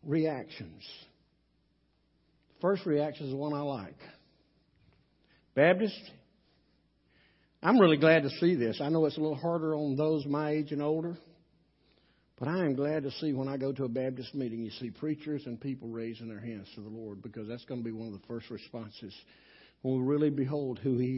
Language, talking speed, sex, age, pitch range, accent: English, 195 wpm, male, 60-79, 120-175 Hz, American